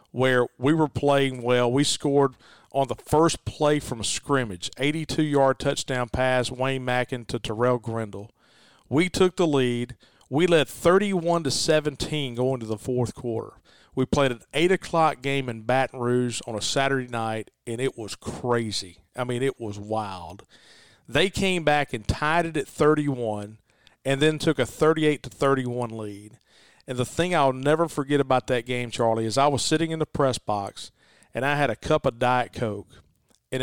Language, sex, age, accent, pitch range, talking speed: English, male, 40-59, American, 120-150 Hz, 175 wpm